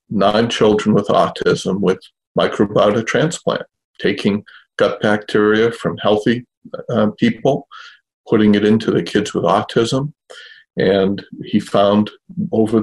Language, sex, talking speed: English, male, 115 wpm